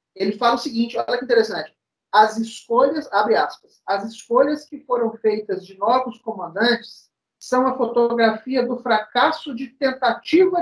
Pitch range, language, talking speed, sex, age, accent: 185-250 Hz, Portuguese, 145 wpm, male, 50-69, Brazilian